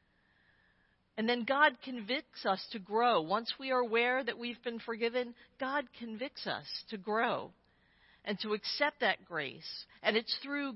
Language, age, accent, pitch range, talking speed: English, 50-69, American, 195-260 Hz, 155 wpm